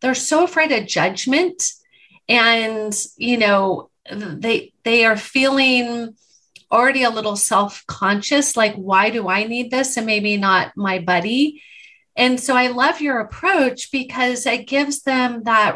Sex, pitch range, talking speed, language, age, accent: female, 205-270 Hz, 145 wpm, English, 30-49, American